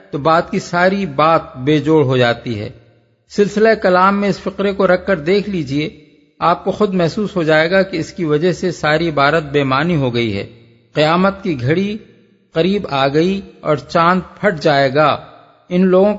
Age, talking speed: 50-69, 165 wpm